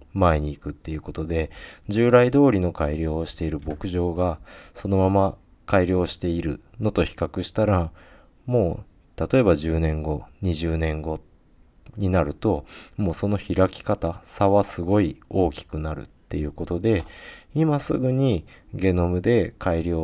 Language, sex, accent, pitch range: Japanese, male, native, 80-105 Hz